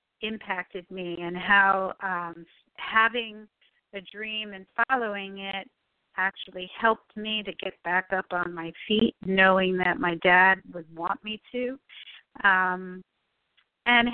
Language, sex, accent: English, female, American